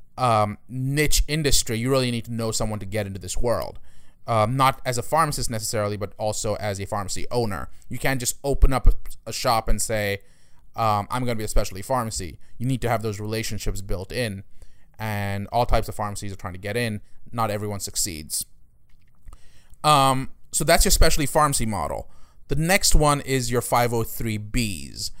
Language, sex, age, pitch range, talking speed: English, male, 20-39, 105-130 Hz, 185 wpm